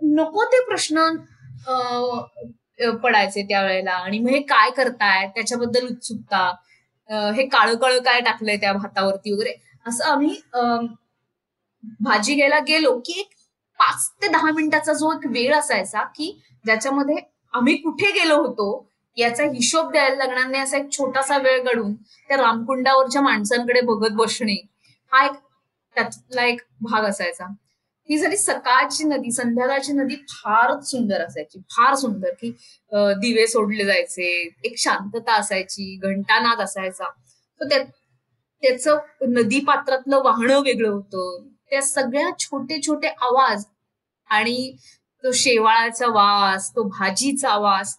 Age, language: 20-39, Marathi